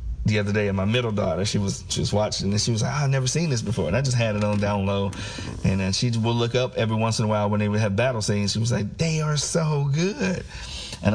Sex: male